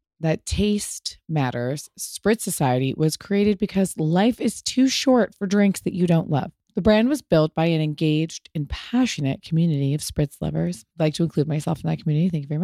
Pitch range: 155-200 Hz